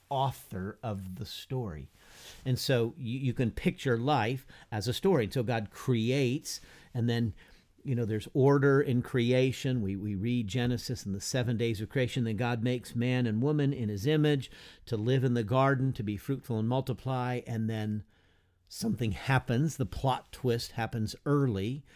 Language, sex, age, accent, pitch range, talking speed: English, male, 50-69, American, 100-130 Hz, 175 wpm